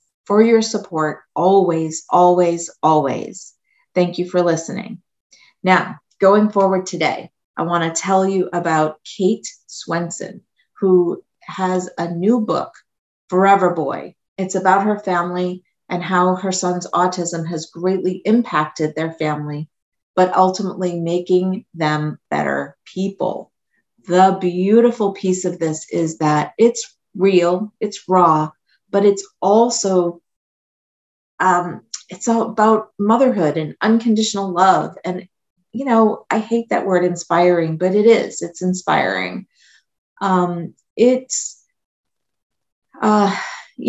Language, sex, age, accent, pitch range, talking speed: English, female, 40-59, American, 170-200 Hz, 120 wpm